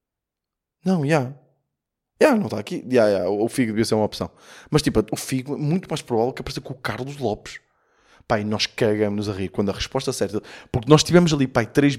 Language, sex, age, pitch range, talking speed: Portuguese, male, 20-39, 100-130 Hz, 225 wpm